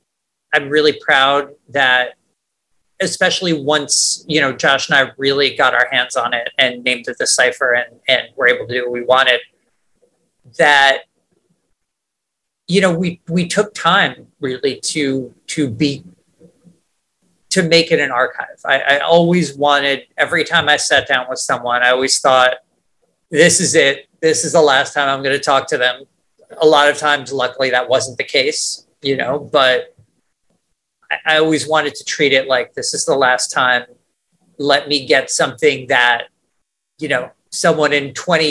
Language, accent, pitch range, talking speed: English, American, 130-155 Hz, 170 wpm